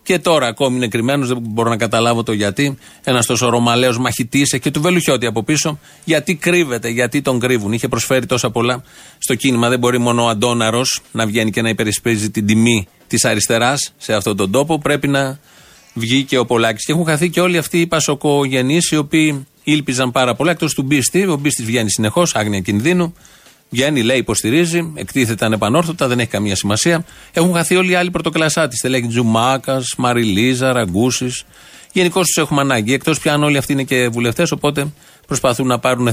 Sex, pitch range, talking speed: male, 115-150 Hz, 185 wpm